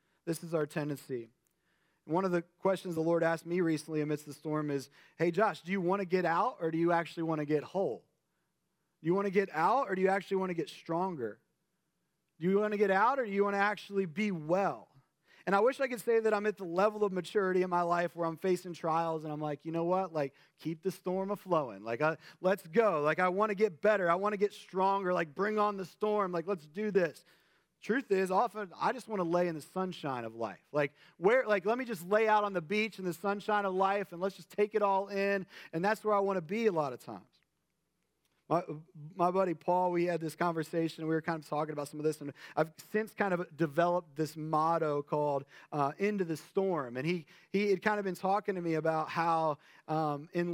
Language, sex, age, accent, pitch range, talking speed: English, male, 30-49, American, 160-195 Hz, 245 wpm